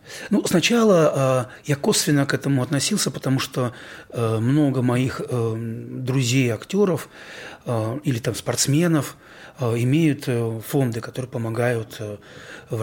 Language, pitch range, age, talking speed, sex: Russian, 115-150 Hz, 30-49, 100 wpm, male